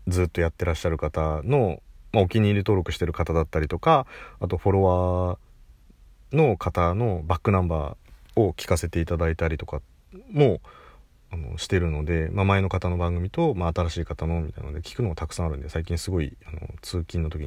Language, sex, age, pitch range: Japanese, male, 40-59, 80-105 Hz